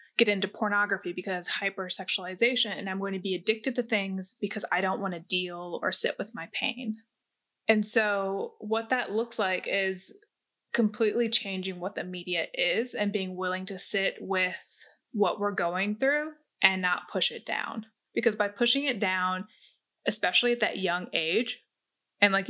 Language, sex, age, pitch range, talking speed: English, female, 20-39, 190-225 Hz, 170 wpm